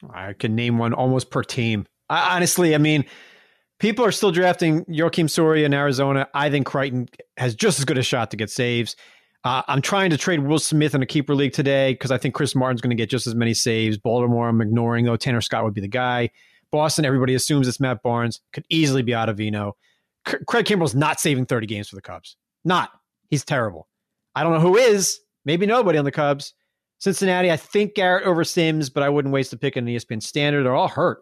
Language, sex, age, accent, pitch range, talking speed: English, male, 30-49, American, 120-160 Hz, 225 wpm